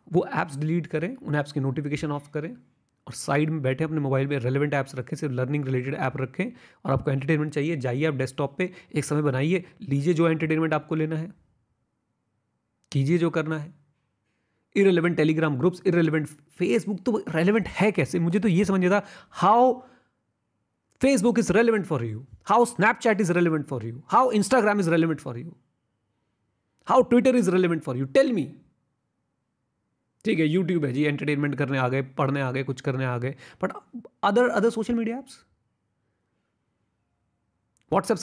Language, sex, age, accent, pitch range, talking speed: Hindi, male, 30-49, native, 135-190 Hz, 170 wpm